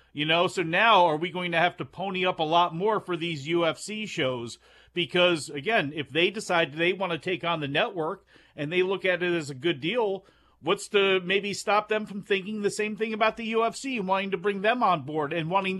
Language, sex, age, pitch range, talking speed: English, male, 40-59, 175-215 Hz, 235 wpm